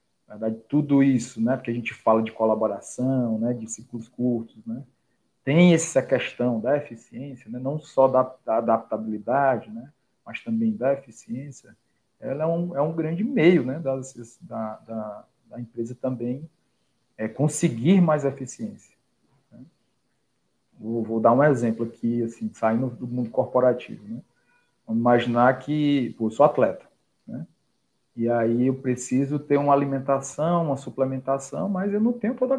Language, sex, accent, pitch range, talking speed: Portuguese, male, Brazilian, 125-175 Hz, 155 wpm